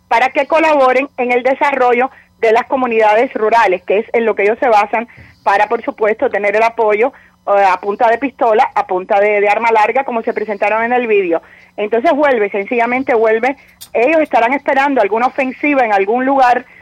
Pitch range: 215-265 Hz